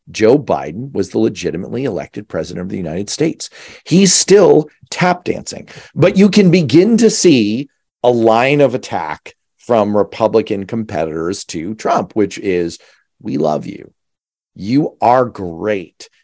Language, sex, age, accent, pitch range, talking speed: English, male, 40-59, American, 100-150 Hz, 140 wpm